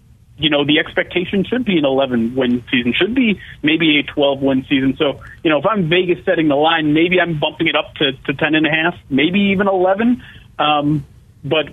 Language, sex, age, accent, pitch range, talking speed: English, male, 40-59, American, 135-175 Hz, 215 wpm